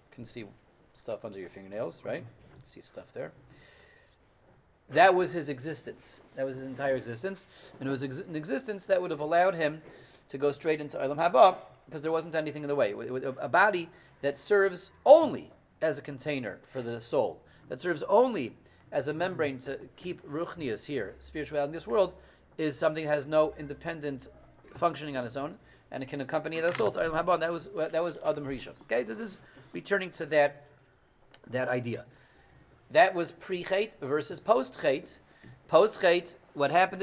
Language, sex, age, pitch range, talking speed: English, male, 30-49, 140-185 Hz, 180 wpm